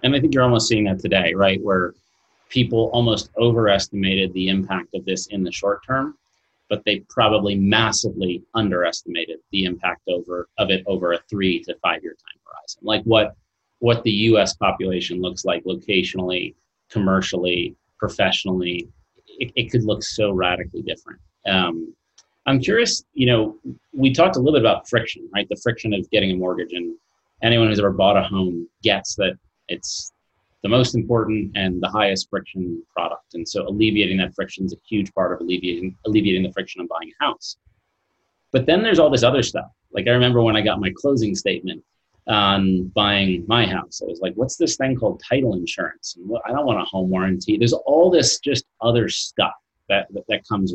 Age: 30-49